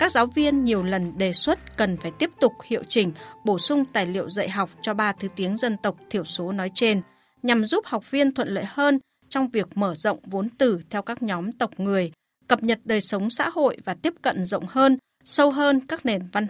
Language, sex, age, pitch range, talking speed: Vietnamese, female, 20-39, 195-255 Hz, 230 wpm